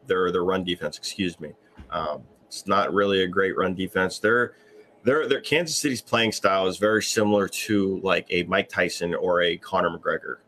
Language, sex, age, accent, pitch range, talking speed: English, male, 30-49, American, 95-110 Hz, 190 wpm